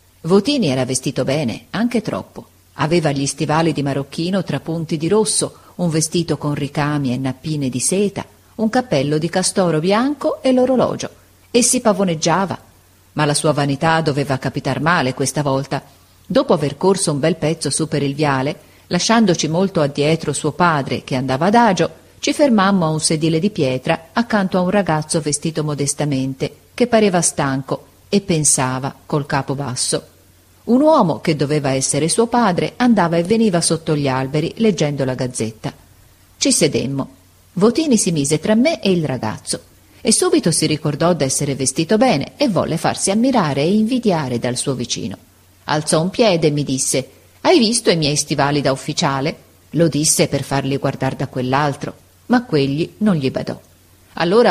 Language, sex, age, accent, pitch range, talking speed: Italian, female, 40-59, native, 140-190 Hz, 165 wpm